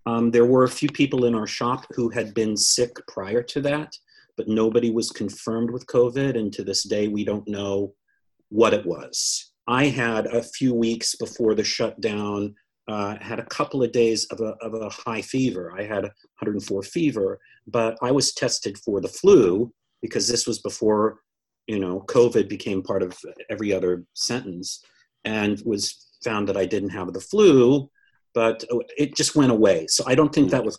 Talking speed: 185 wpm